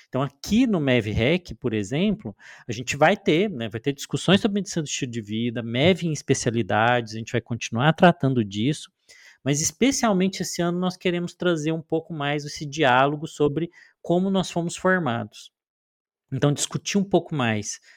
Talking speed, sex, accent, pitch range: 170 wpm, male, Brazilian, 120-170 Hz